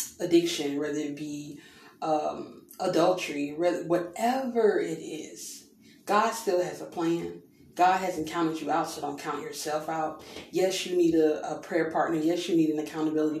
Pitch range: 155-225 Hz